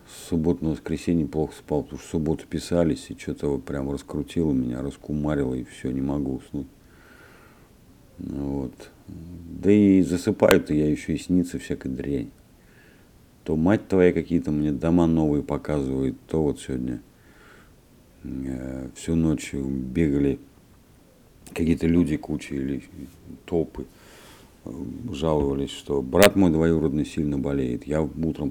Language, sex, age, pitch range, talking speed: Russian, male, 50-69, 70-85 Hz, 130 wpm